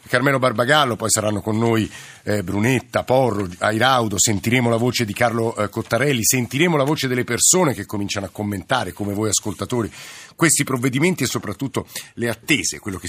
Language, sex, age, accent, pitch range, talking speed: Italian, male, 50-69, native, 105-125 Hz, 170 wpm